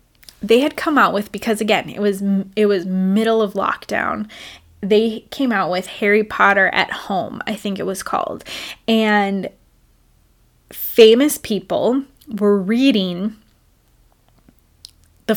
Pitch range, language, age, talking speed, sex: 200-225 Hz, English, 10-29, 130 wpm, female